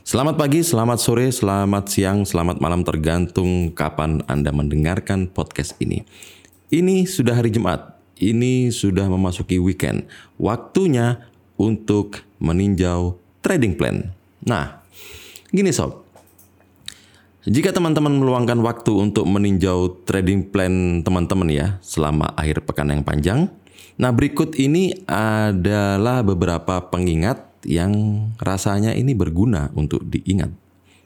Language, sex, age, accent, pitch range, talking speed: Indonesian, male, 30-49, native, 85-105 Hz, 110 wpm